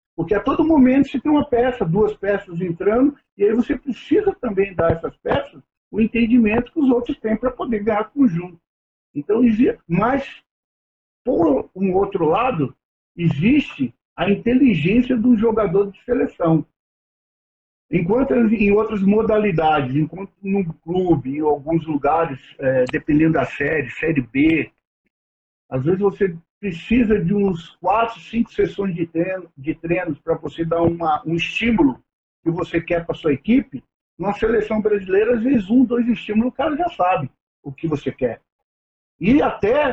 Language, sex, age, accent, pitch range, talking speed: Portuguese, male, 50-69, Brazilian, 170-245 Hz, 150 wpm